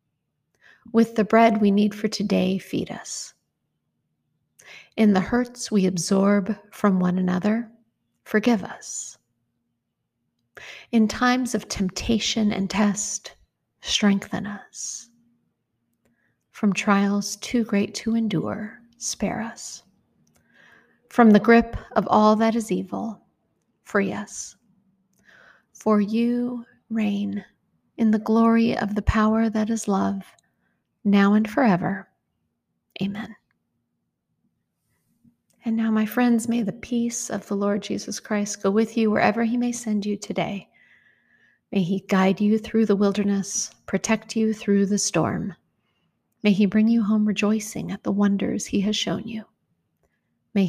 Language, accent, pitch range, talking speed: English, American, 200-225 Hz, 130 wpm